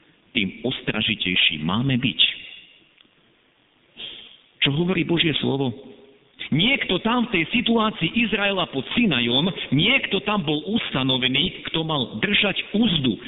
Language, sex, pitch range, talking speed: Slovak, male, 130-200 Hz, 110 wpm